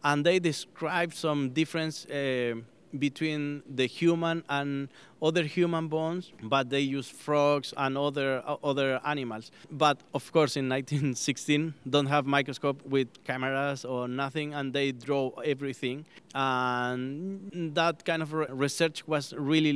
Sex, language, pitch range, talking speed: male, English, 130-150 Hz, 135 wpm